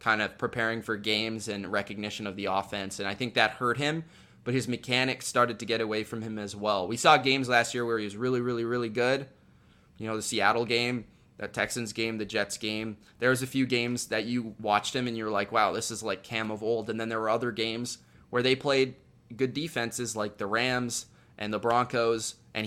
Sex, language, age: male, English, 20-39